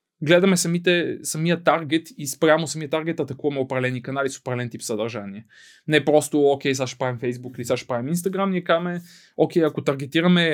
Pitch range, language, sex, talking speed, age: 135-175 Hz, Bulgarian, male, 180 wpm, 20-39